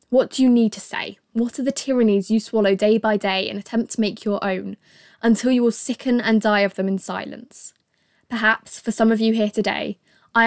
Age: 10-29